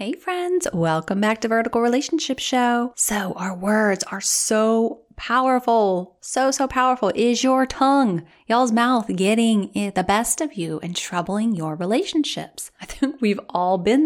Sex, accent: female, American